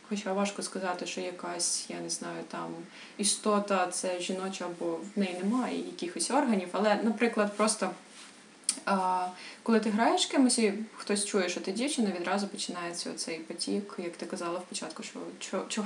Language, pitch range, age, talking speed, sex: Ukrainian, 180-215 Hz, 20-39, 155 wpm, female